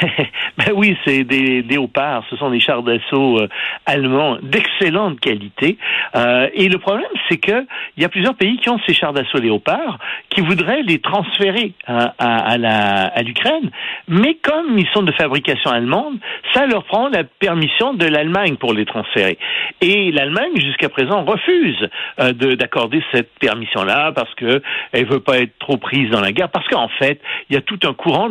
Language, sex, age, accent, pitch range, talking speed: French, male, 60-79, French, 120-185 Hz, 185 wpm